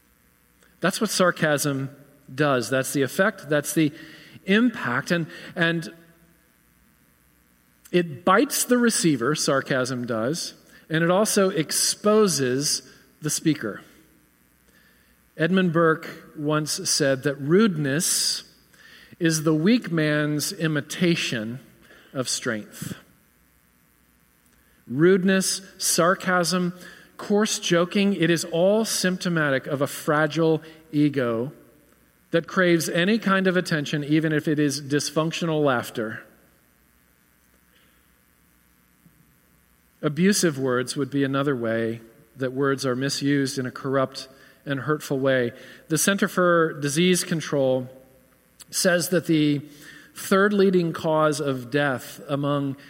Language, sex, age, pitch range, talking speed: English, male, 40-59, 125-170 Hz, 105 wpm